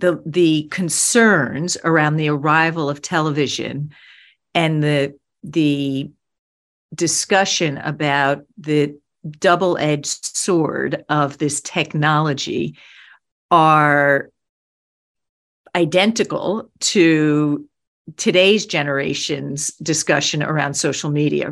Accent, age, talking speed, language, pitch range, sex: American, 50-69, 80 wpm, English, 145-175 Hz, female